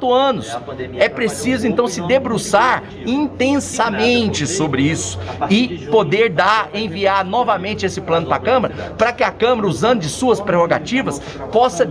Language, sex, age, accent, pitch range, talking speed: Portuguese, male, 50-69, Brazilian, 195-245 Hz, 140 wpm